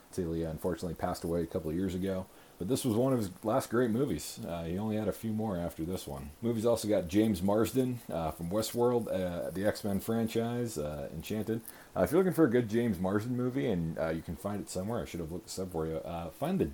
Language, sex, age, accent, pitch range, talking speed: English, male, 40-59, American, 80-110 Hz, 250 wpm